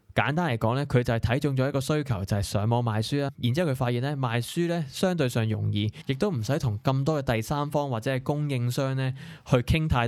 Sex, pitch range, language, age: male, 115-145 Hz, Chinese, 20-39